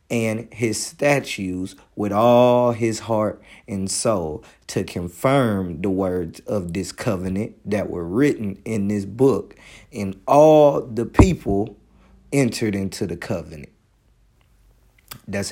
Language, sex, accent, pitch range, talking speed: English, male, American, 95-125 Hz, 120 wpm